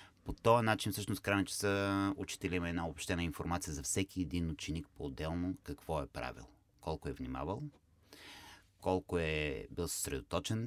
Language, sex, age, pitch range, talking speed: Bulgarian, male, 30-49, 85-100 Hz, 145 wpm